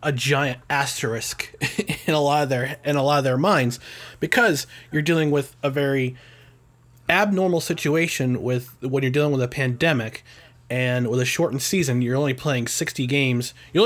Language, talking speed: English, 175 wpm